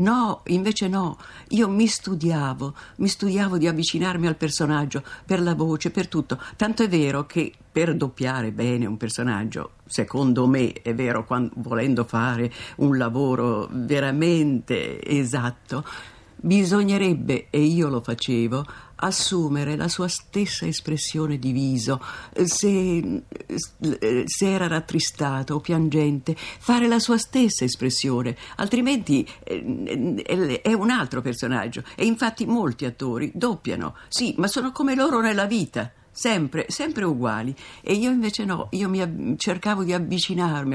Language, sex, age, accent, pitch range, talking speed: Italian, female, 50-69, native, 130-190 Hz, 130 wpm